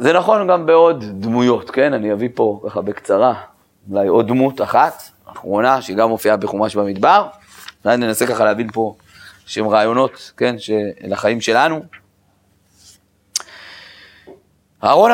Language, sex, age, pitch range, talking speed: Hebrew, male, 30-49, 100-160 Hz, 120 wpm